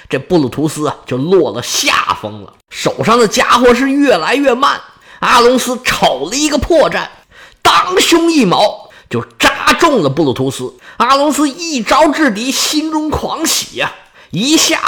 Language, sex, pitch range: Chinese, male, 200-275 Hz